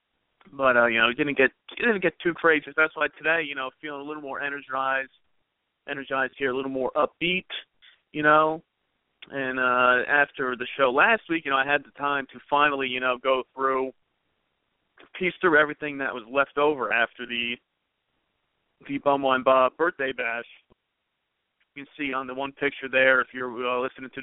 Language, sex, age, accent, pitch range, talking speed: English, male, 40-59, American, 125-135 Hz, 190 wpm